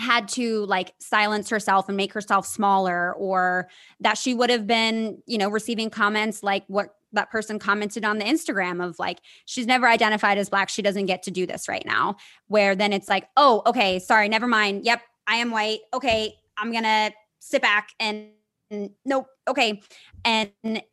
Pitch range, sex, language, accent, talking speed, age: 200-245 Hz, female, English, American, 190 wpm, 20-39